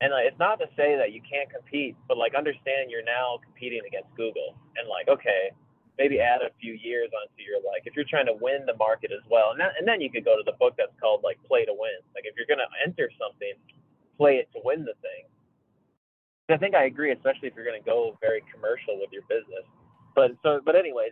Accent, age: American, 20-39